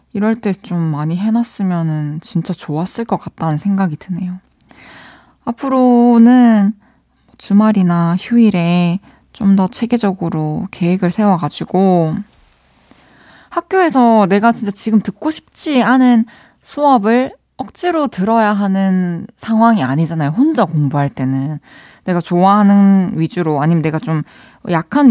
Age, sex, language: 20-39, female, Korean